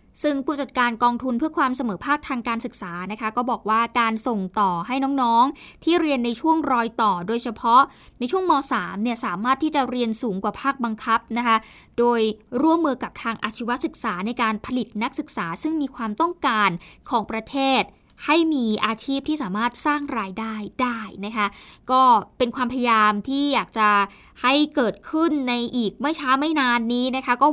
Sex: female